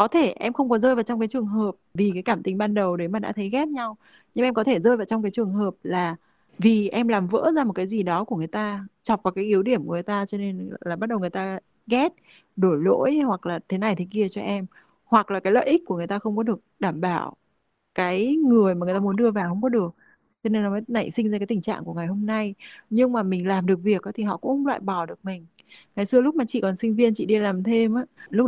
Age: 20-39